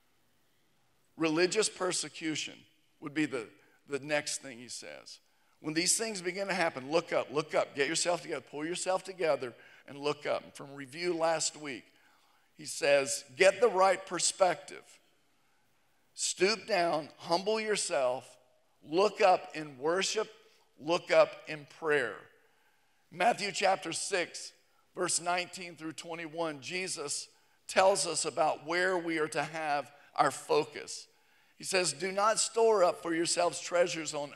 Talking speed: 140 wpm